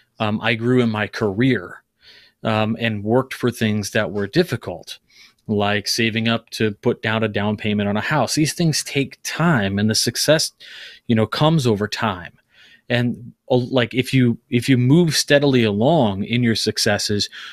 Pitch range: 110-130 Hz